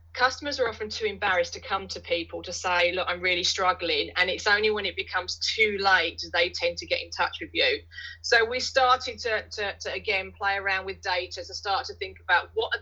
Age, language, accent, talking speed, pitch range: 30-49, English, British, 230 wpm, 180-220 Hz